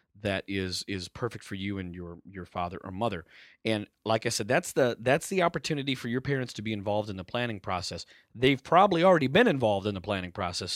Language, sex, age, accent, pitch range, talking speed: English, male, 40-59, American, 95-135 Hz, 225 wpm